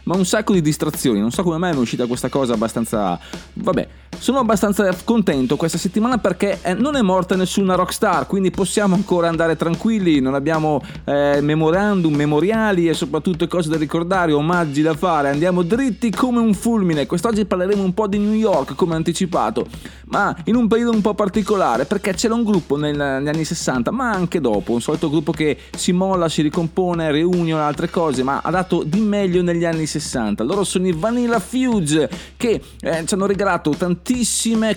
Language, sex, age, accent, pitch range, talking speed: Italian, male, 30-49, native, 145-200 Hz, 185 wpm